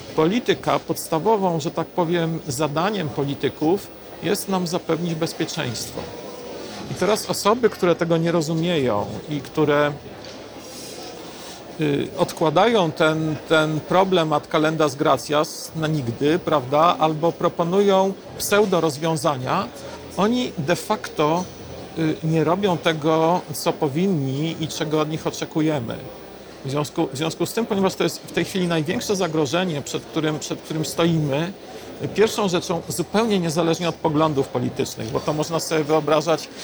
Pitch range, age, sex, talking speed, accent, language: 155-175 Hz, 50-69, male, 125 wpm, native, Polish